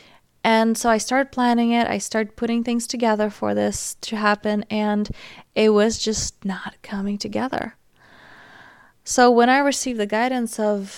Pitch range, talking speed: 205-235 Hz, 160 wpm